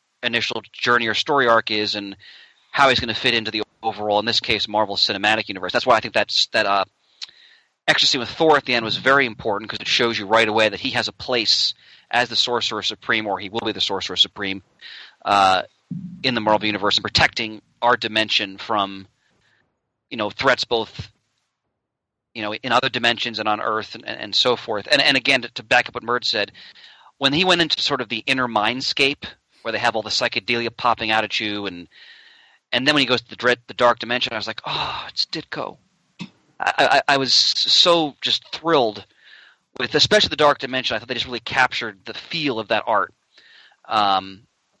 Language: English